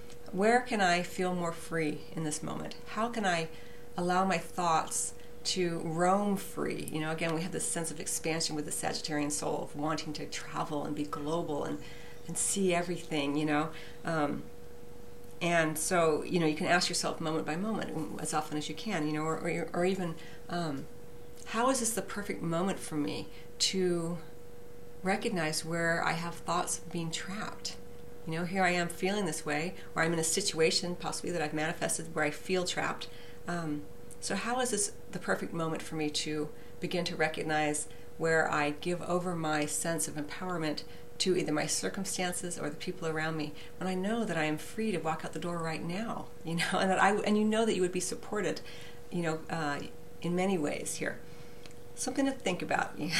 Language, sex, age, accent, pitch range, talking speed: English, female, 40-59, American, 155-180 Hz, 195 wpm